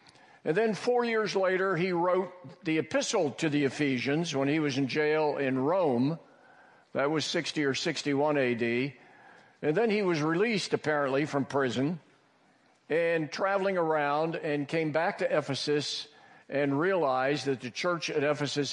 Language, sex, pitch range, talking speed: English, male, 135-165 Hz, 155 wpm